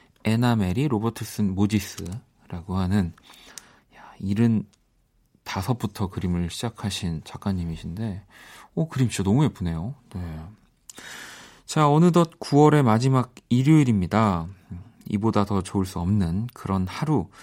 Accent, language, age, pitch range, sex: native, Korean, 40-59, 100-140 Hz, male